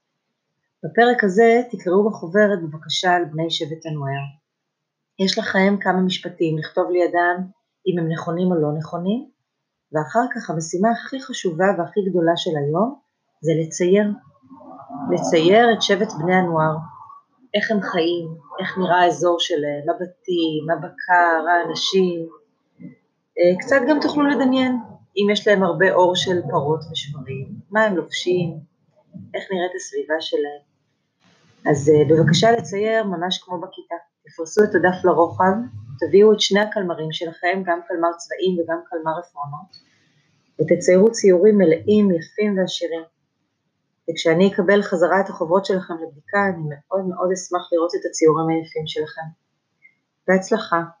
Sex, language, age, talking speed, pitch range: female, Hebrew, 30-49, 125 wpm, 165-200 Hz